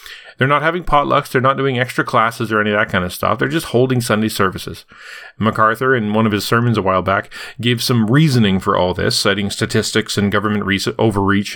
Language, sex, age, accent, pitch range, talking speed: English, male, 40-59, American, 110-140 Hz, 215 wpm